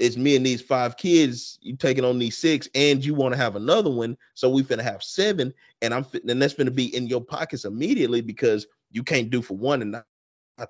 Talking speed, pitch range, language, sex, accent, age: 230 wpm, 115-150 Hz, English, male, American, 30-49